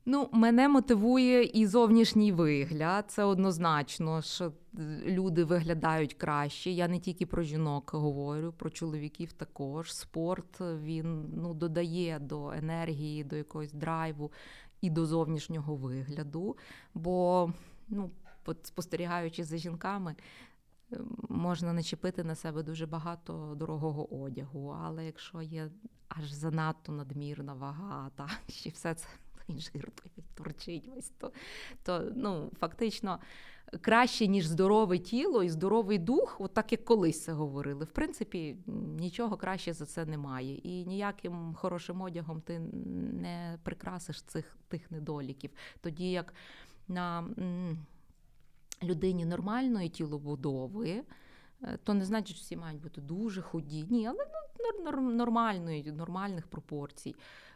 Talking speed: 120 wpm